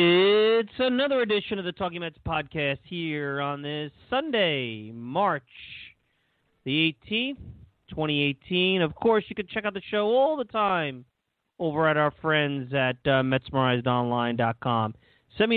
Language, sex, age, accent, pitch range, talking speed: English, male, 30-49, American, 125-175 Hz, 140 wpm